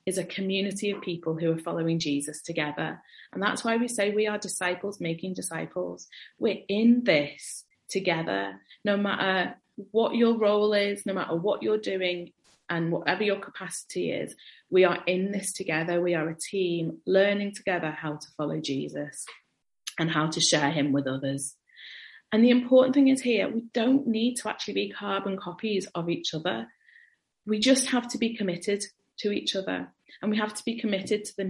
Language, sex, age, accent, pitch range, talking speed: English, female, 30-49, British, 170-215 Hz, 185 wpm